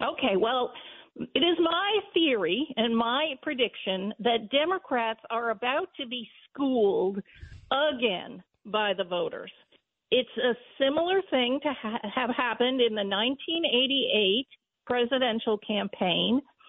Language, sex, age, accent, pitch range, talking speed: English, female, 50-69, American, 220-290 Hz, 115 wpm